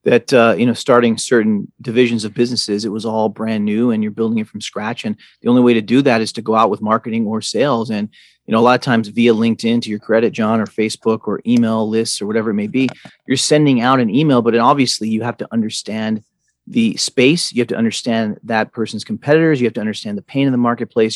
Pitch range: 110-130 Hz